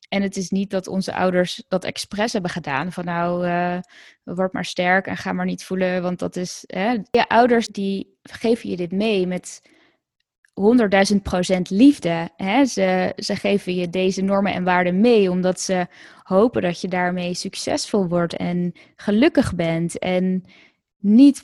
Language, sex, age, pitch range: Dutch, female, 20-39, 180-205 Hz